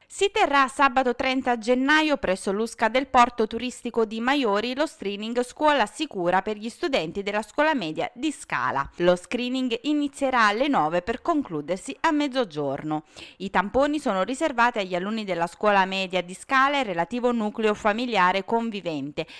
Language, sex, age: Italian, female, 30-49